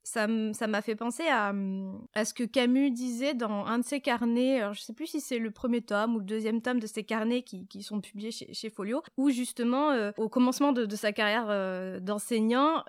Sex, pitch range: female, 210-265 Hz